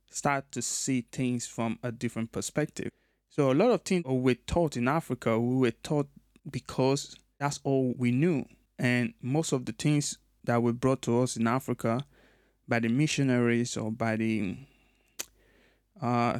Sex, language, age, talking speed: male, English, 20-39, 160 wpm